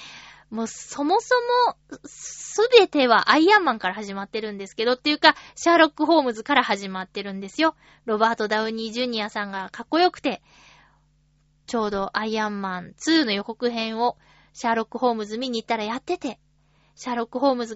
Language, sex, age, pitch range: Japanese, female, 20-39, 220-340 Hz